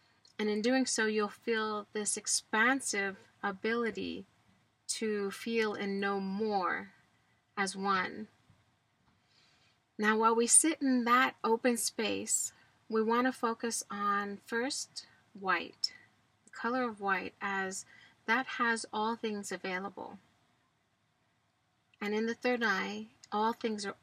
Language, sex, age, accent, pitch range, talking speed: English, female, 30-49, American, 195-235 Hz, 120 wpm